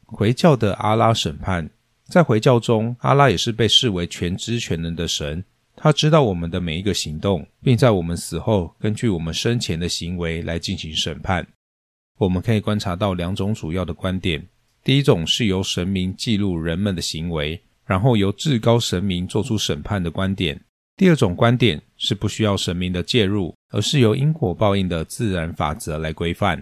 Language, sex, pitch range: Chinese, male, 85-115 Hz